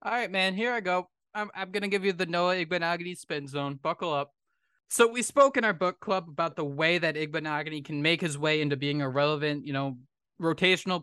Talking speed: 225 wpm